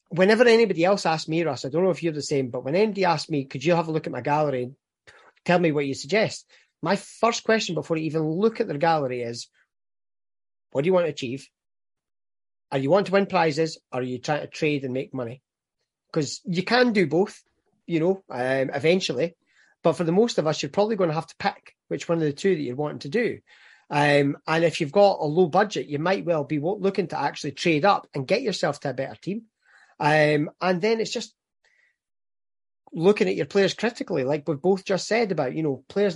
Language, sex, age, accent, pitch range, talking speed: English, male, 30-49, British, 145-195 Hz, 230 wpm